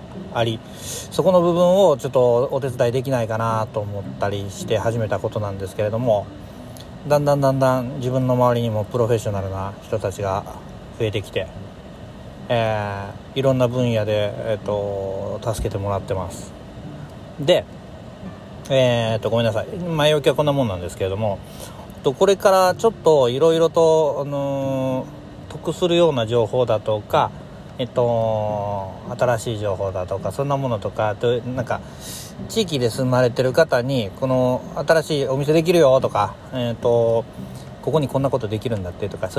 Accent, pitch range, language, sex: native, 105-135 Hz, Japanese, male